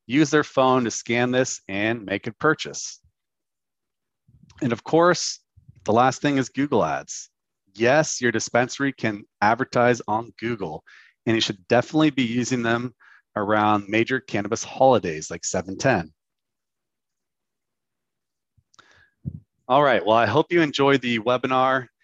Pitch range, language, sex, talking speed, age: 105-140 Hz, English, male, 130 wpm, 30-49